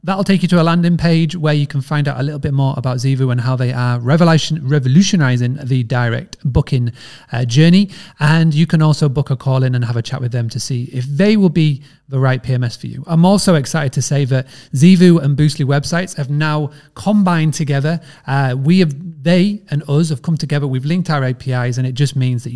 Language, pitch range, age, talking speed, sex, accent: English, 130-155 Hz, 30-49, 225 wpm, male, British